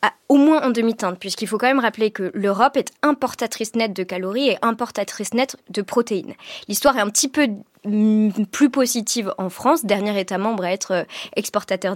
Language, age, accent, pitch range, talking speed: French, 20-39, French, 195-245 Hz, 185 wpm